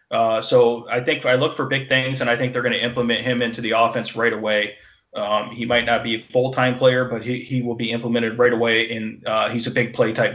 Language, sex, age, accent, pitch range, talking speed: English, male, 30-49, American, 115-130 Hz, 260 wpm